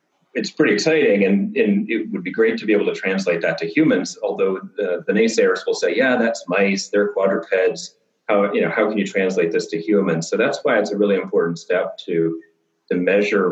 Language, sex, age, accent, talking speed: English, male, 40-59, American, 215 wpm